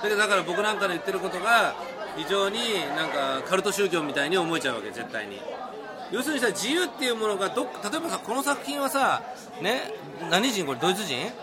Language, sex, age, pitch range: Japanese, male, 40-59, 190-255 Hz